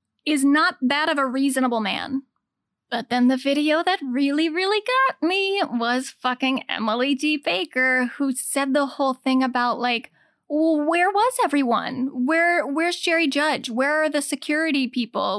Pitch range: 245-300 Hz